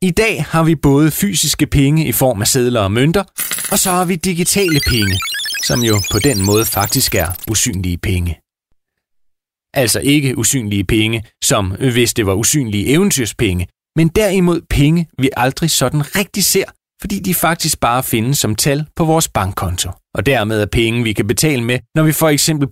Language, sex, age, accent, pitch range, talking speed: Danish, male, 30-49, native, 110-160 Hz, 180 wpm